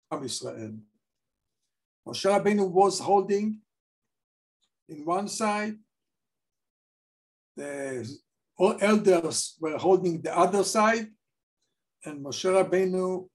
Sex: male